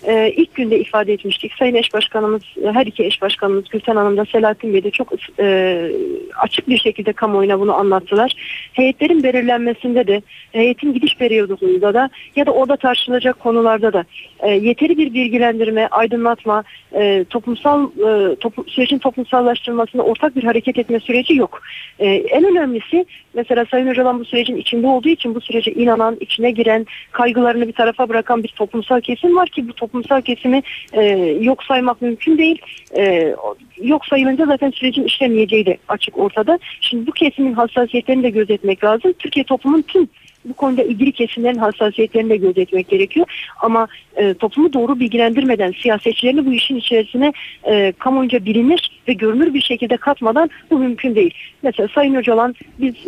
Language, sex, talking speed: Turkish, female, 160 wpm